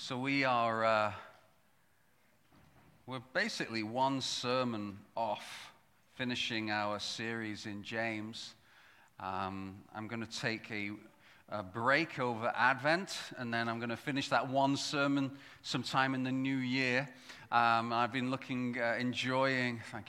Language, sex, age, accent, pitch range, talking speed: English, male, 40-59, British, 115-145 Hz, 130 wpm